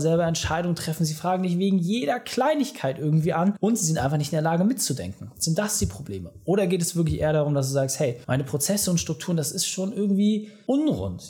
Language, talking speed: German, 230 wpm